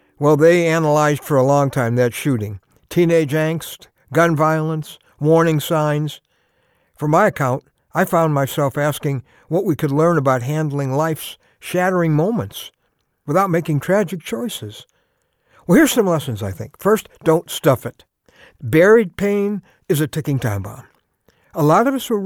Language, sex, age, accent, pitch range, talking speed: English, male, 60-79, American, 135-185 Hz, 155 wpm